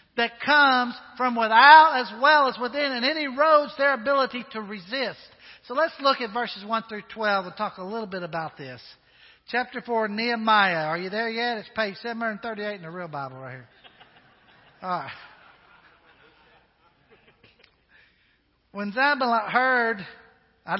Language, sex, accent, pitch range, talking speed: English, male, American, 190-265 Hz, 145 wpm